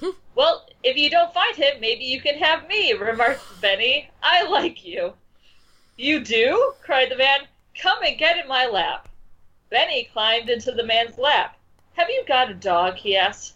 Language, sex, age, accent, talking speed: English, female, 40-59, American, 175 wpm